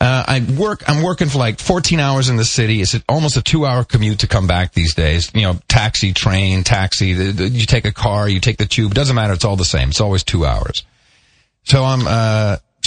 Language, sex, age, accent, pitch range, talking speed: English, male, 40-59, American, 115-145 Hz, 235 wpm